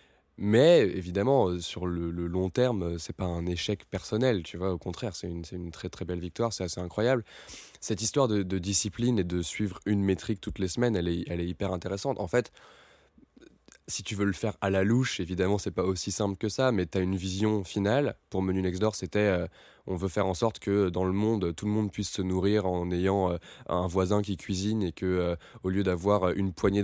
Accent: French